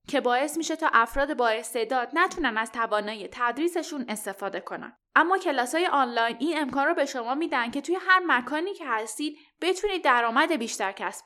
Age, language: 10-29, Persian